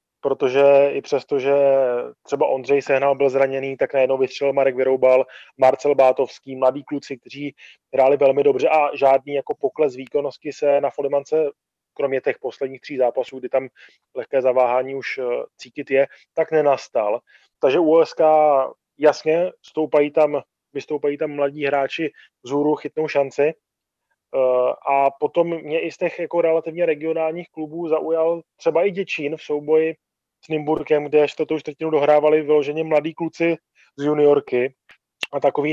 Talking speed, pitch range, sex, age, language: 145 wpm, 140-160 Hz, male, 20-39, Czech